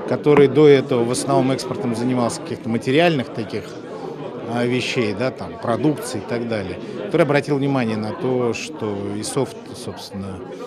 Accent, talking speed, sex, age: native, 145 wpm, male, 40-59